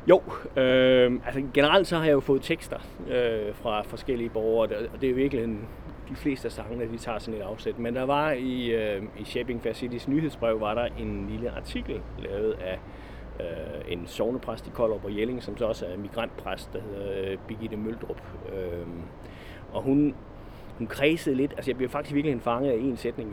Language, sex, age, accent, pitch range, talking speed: Danish, male, 30-49, native, 105-135 Hz, 195 wpm